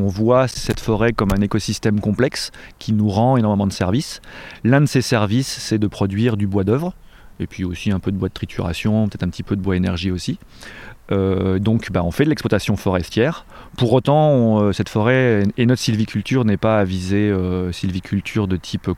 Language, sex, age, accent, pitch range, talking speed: French, male, 30-49, French, 95-110 Hz, 215 wpm